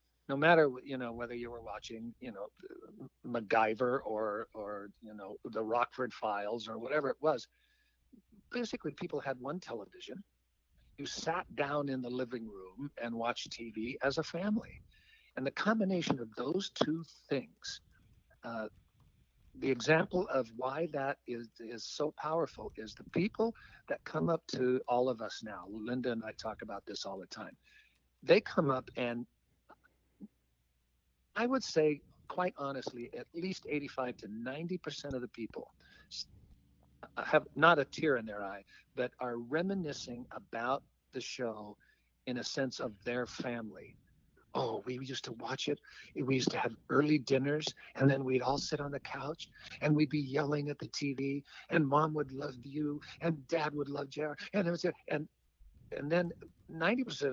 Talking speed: 160 wpm